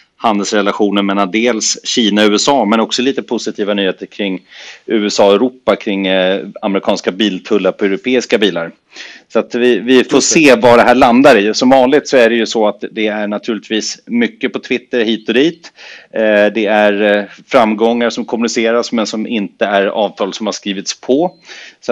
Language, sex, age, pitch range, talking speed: Swedish, male, 30-49, 100-115 Hz, 175 wpm